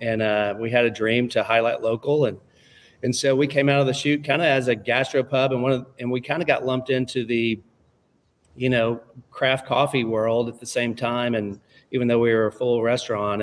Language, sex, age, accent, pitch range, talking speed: English, male, 40-59, American, 115-130 Hz, 235 wpm